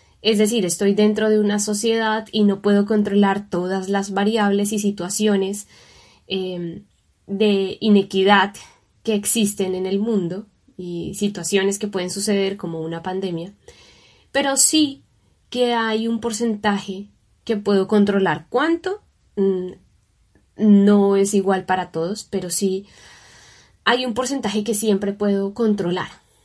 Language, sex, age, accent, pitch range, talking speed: Spanish, female, 10-29, Colombian, 195-230 Hz, 125 wpm